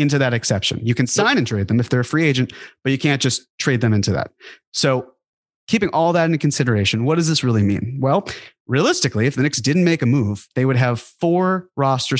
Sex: male